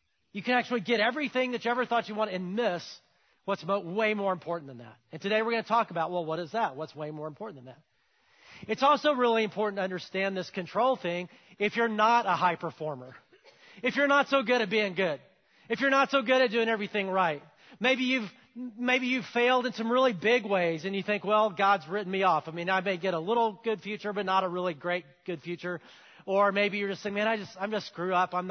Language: English